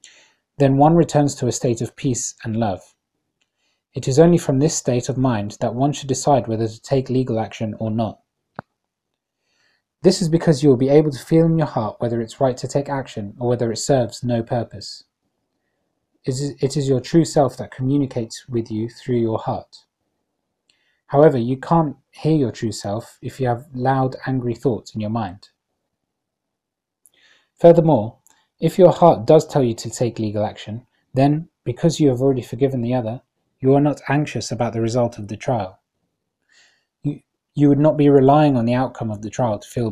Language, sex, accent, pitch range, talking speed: English, male, British, 115-145 Hz, 185 wpm